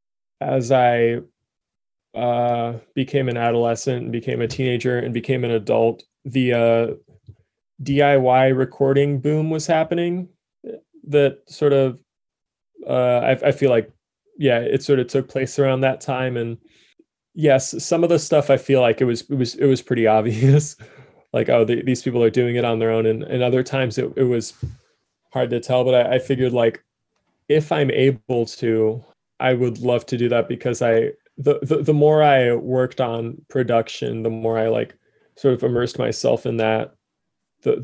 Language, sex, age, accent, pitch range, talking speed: English, male, 20-39, American, 115-135 Hz, 175 wpm